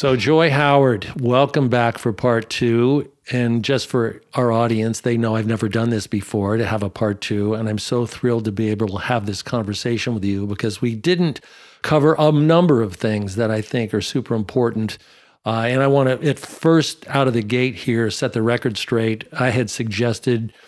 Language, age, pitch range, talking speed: English, 50-69, 110-130 Hz, 205 wpm